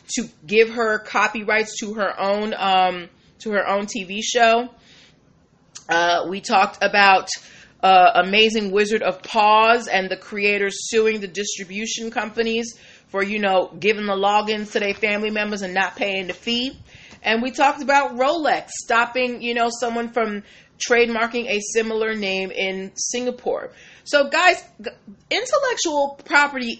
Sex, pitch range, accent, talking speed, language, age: female, 205-255 Hz, American, 145 wpm, English, 30-49